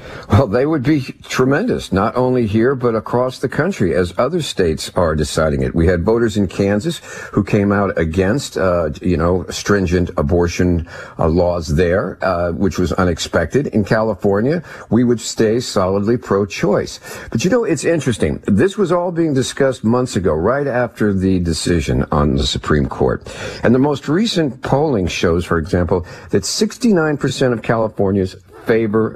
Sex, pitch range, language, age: male, 90-120 Hz, English, 50-69